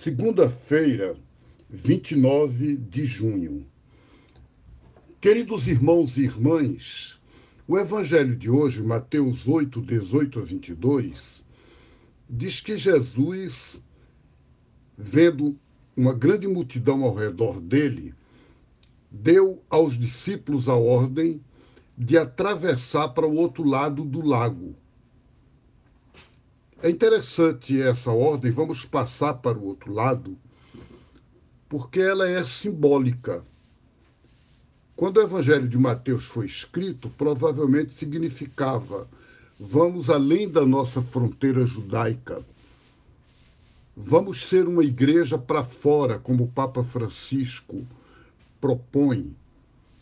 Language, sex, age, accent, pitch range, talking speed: Portuguese, male, 60-79, Brazilian, 125-155 Hz, 95 wpm